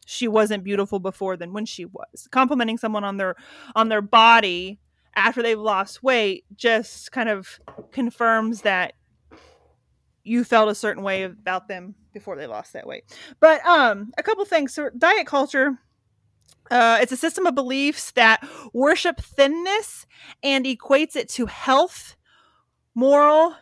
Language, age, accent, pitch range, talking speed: English, 30-49, American, 210-280 Hz, 150 wpm